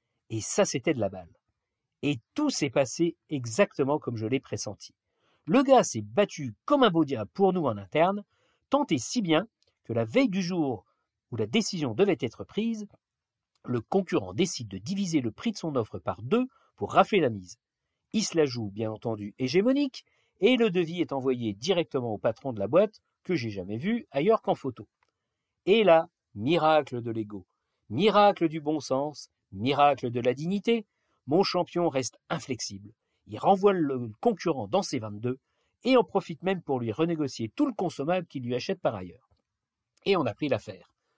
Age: 50-69